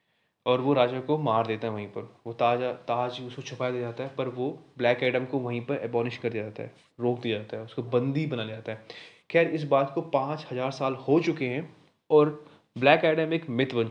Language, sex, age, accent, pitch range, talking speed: Hindi, male, 20-39, native, 115-140 Hz, 235 wpm